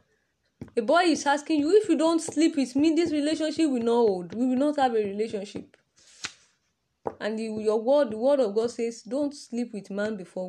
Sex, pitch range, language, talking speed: female, 210-295 Hz, English, 205 wpm